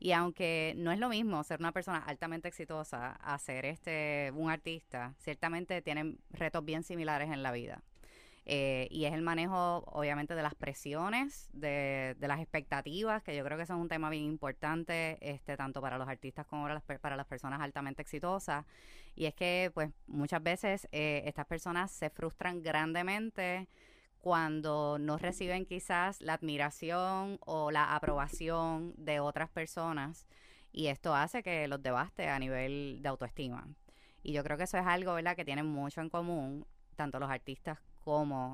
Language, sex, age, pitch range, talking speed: Spanish, female, 20-39, 140-170 Hz, 170 wpm